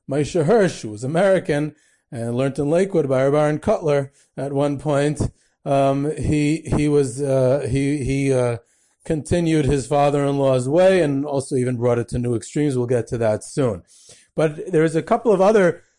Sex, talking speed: male, 175 wpm